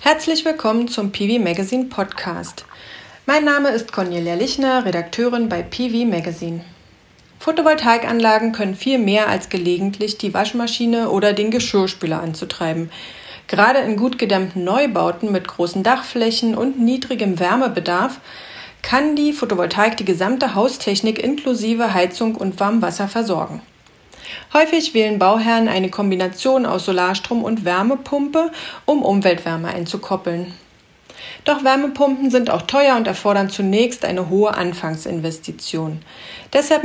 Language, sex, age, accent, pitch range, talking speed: German, female, 40-59, German, 190-250 Hz, 120 wpm